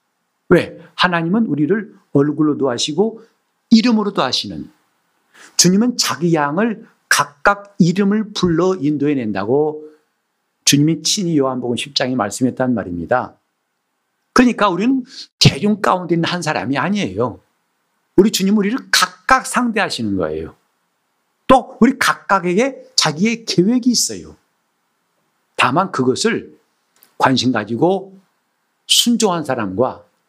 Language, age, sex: Korean, 50-69, male